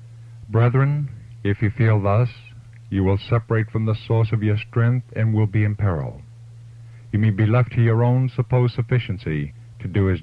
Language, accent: English, American